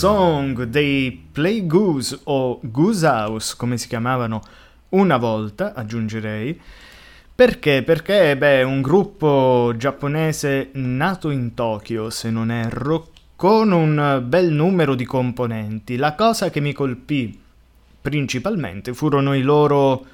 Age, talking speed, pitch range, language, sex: 20-39, 115 wpm, 125-150 Hz, Italian, male